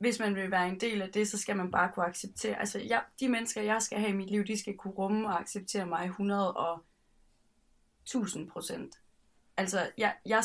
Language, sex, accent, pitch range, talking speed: Danish, female, native, 185-215 Hz, 210 wpm